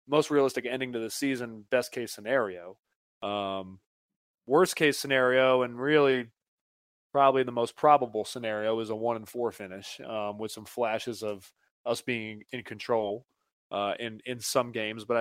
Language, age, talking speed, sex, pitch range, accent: English, 20-39, 160 wpm, male, 110-130 Hz, American